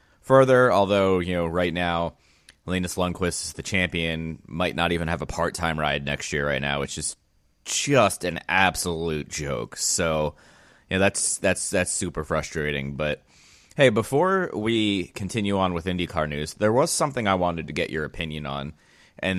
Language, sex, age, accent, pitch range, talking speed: English, male, 30-49, American, 75-95 Hz, 175 wpm